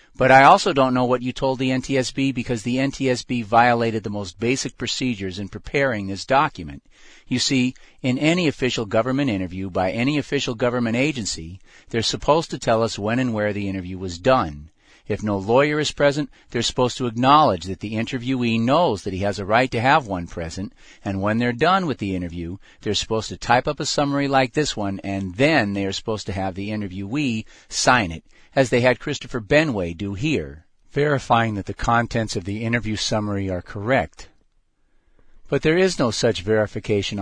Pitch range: 100-130 Hz